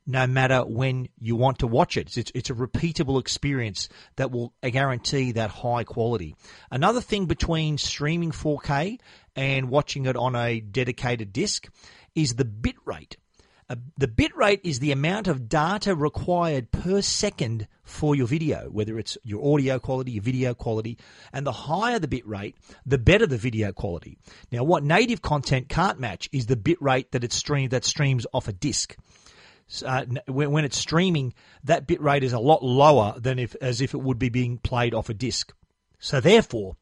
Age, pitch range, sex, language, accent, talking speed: 40-59, 120-155 Hz, male, English, Australian, 180 wpm